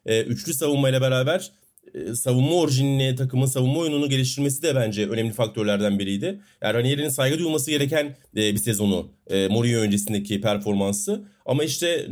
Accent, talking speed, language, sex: native, 130 wpm, Turkish, male